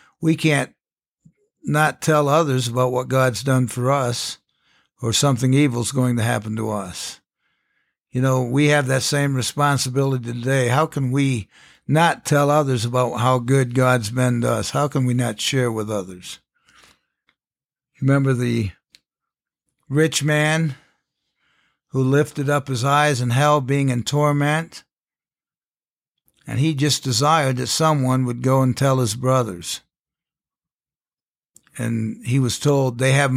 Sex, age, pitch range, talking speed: male, 60-79, 125-140 Hz, 140 wpm